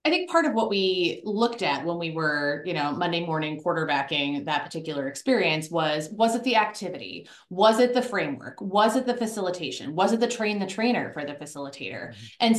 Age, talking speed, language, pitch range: 30-49, 200 wpm, English, 155-210 Hz